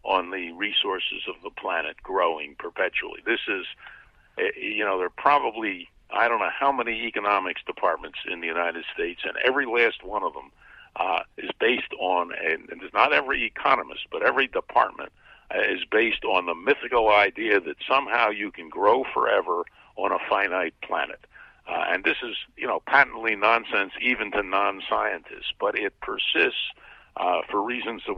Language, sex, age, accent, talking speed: English, male, 60-79, American, 170 wpm